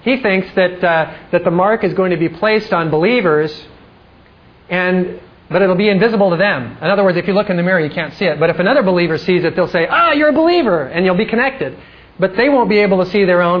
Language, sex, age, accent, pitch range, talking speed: English, male, 40-59, American, 155-195 Hz, 270 wpm